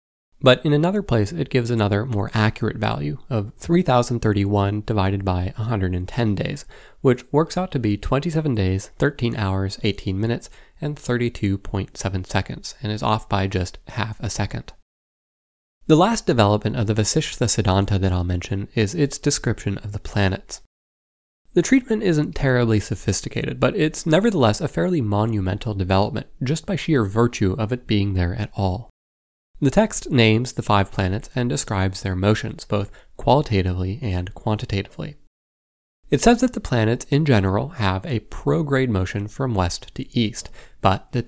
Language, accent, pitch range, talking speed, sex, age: English, American, 95-125 Hz, 155 wpm, male, 20-39